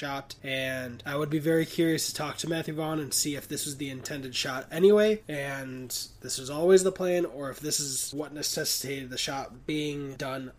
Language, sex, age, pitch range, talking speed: English, male, 20-39, 130-165 Hz, 210 wpm